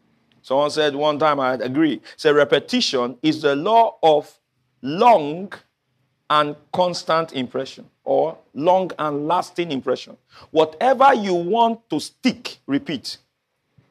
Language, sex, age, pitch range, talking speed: English, male, 50-69, 150-230 Hz, 115 wpm